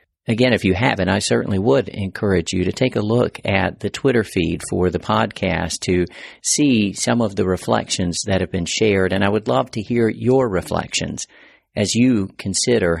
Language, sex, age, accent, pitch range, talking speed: English, male, 50-69, American, 90-115 Hz, 190 wpm